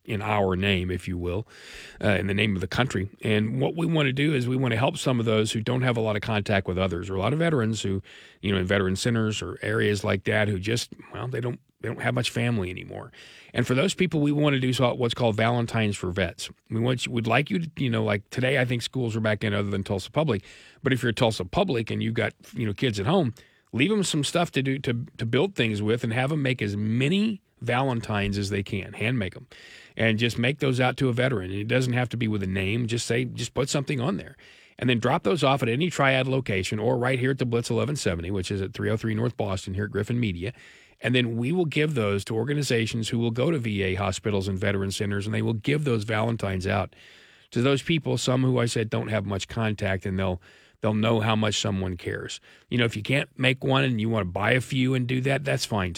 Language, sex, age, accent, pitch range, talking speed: English, male, 40-59, American, 100-130 Hz, 265 wpm